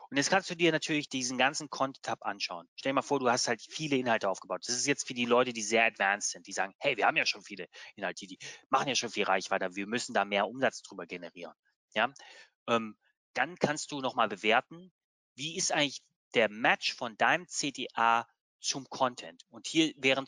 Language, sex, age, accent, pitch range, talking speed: German, male, 30-49, German, 115-150 Hz, 210 wpm